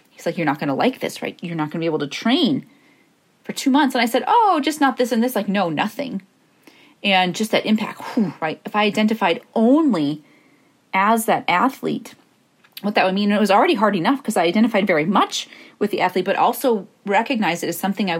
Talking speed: 230 wpm